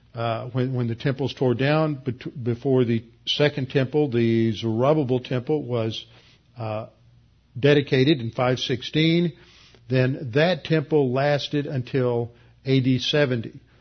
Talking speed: 115 wpm